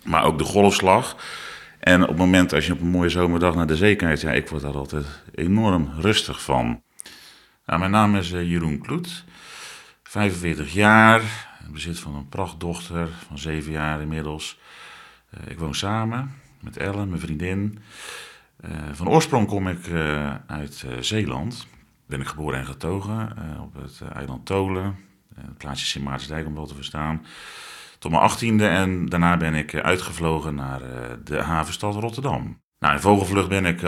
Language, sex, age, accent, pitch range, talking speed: Dutch, male, 40-59, Dutch, 75-95 Hz, 170 wpm